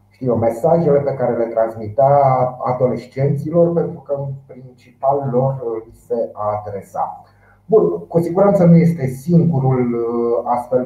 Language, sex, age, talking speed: Romanian, male, 30-49, 100 wpm